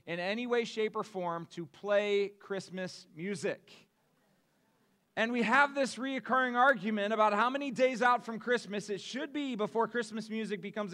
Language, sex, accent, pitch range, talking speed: English, male, American, 185-235 Hz, 165 wpm